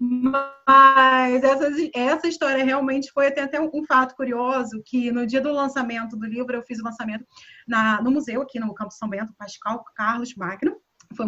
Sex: female